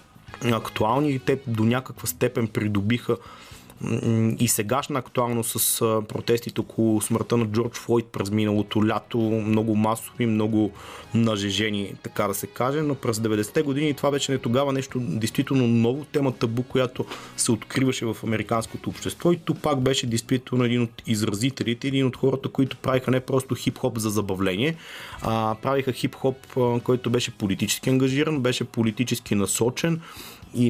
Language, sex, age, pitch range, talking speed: Bulgarian, male, 30-49, 105-125 Hz, 150 wpm